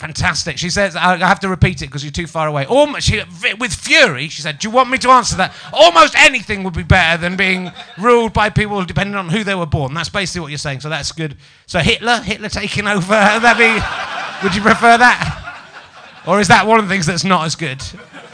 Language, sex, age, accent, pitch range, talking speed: English, male, 30-49, British, 165-230 Hz, 230 wpm